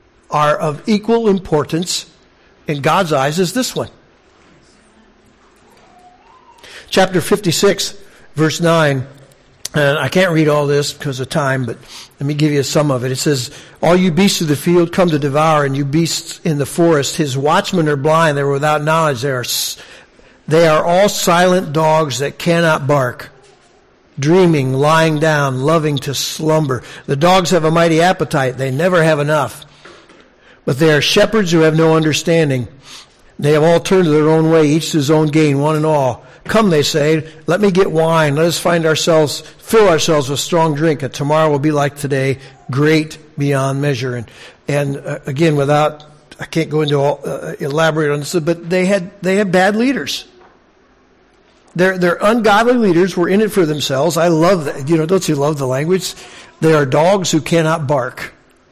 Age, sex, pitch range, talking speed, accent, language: 60-79, male, 145-175 Hz, 180 wpm, American, English